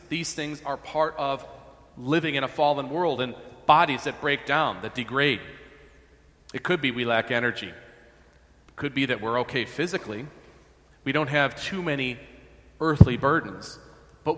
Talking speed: 160 wpm